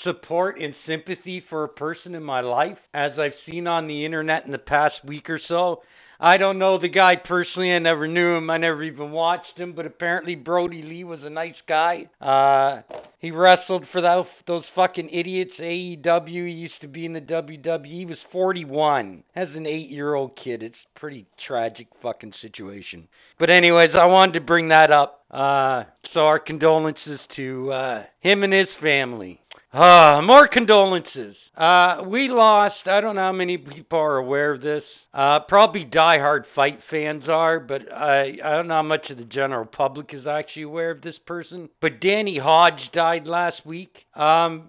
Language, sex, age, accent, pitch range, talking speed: English, male, 50-69, American, 145-175 Hz, 185 wpm